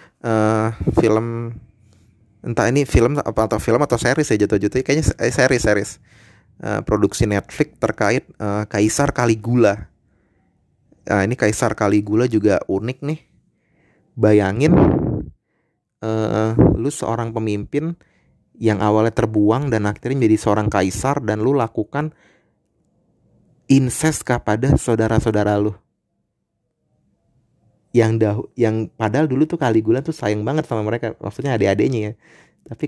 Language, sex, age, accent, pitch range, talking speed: Indonesian, male, 30-49, native, 105-125 Hz, 120 wpm